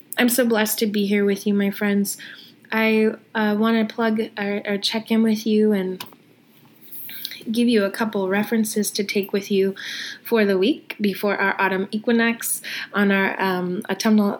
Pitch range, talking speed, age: 190-220 Hz, 165 wpm, 20-39